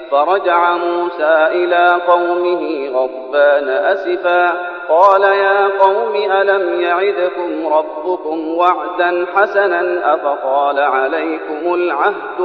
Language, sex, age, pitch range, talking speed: English, male, 40-59, 155-195 Hz, 80 wpm